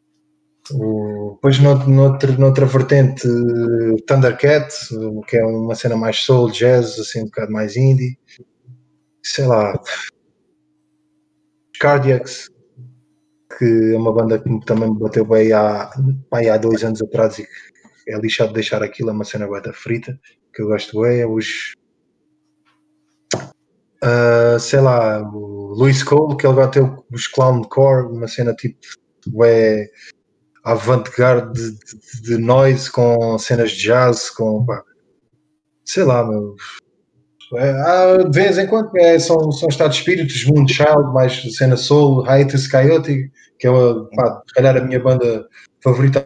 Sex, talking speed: male, 145 wpm